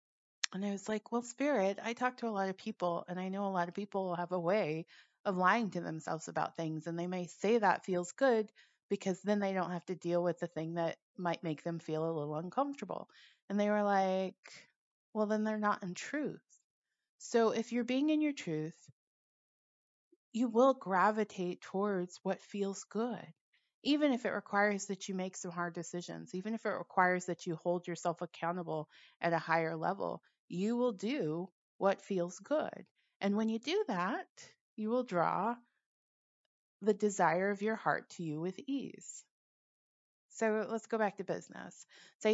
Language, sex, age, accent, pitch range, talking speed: English, female, 30-49, American, 175-220 Hz, 185 wpm